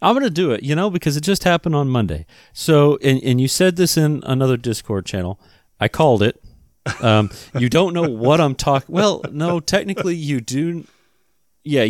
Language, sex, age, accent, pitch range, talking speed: English, male, 40-59, American, 100-140 Hz, 195 wpm